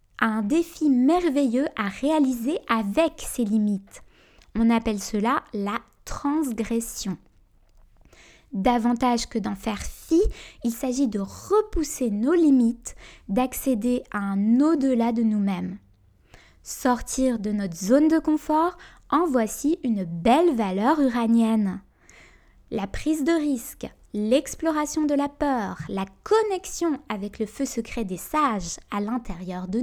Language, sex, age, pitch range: French, female, 20-39, 215-295 Hz